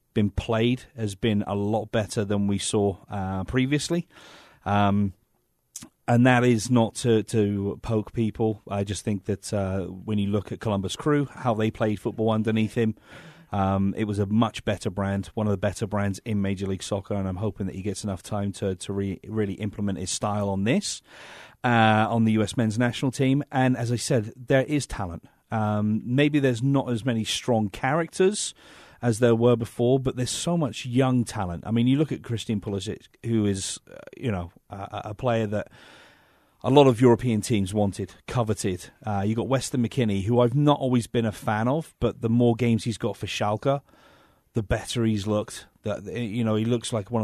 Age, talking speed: 40-59, 200 wpm